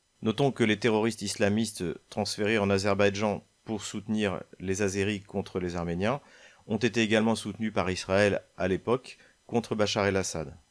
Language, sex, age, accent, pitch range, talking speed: French, male, 40-59, French, 100-120 Hz, 145 wpm